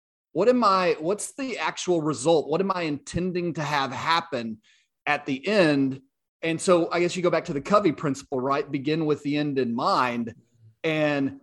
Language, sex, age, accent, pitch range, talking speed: English, male, 30-49, American, 140-175 Hz, 190 wpm